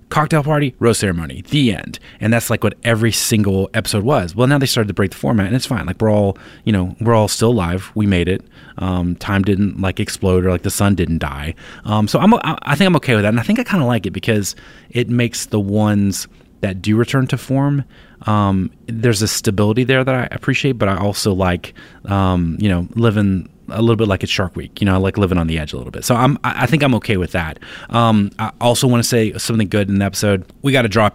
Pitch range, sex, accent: 90-115 Hz, male, American